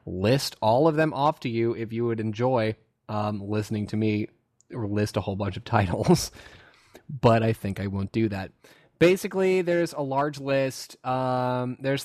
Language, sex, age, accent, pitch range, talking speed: English, male, 20-39, American, 110-140 Hz, 180 wpm